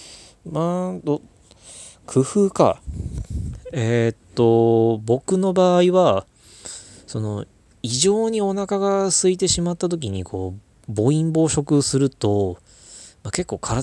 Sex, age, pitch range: male, 20-39, 95-135 Hz